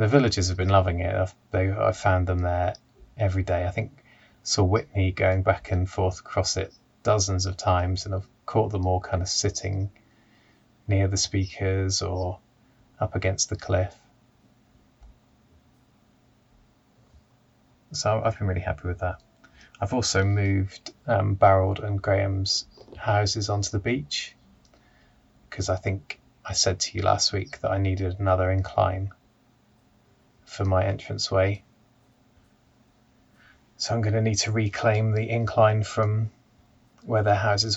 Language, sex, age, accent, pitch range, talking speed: English, male, 20-39, British, 95-110 Hz, 145 wpm